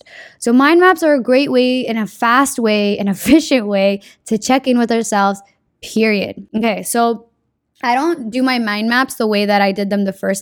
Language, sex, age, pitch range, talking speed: English, female, 10-29, 210-260 Hz, 205 wpm